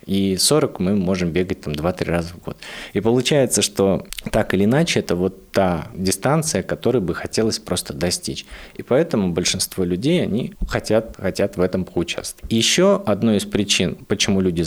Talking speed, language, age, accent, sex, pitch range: 170 wpm, Russian, 30-49, native, male, 95-125 Hz